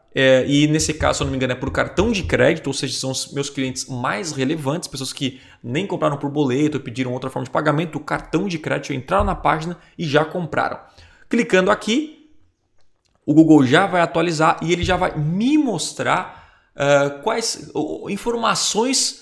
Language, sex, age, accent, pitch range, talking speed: Portuguese, male, 20-39, Brazilian, 135-180 Hz, 185 wpm